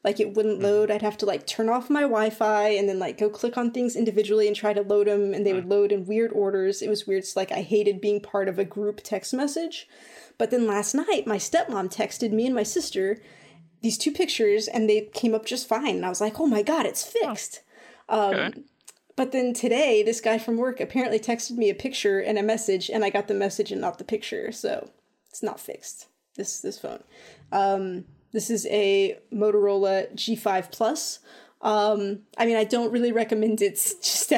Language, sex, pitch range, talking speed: English, female, 205-240 Hz, 215 wpm